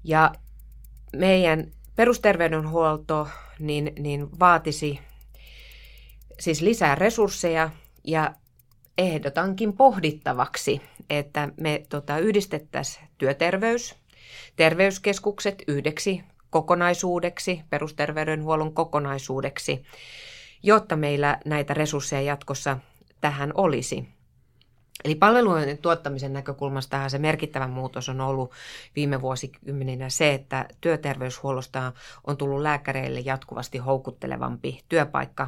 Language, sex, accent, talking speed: Finnish, female, native, 75 wpm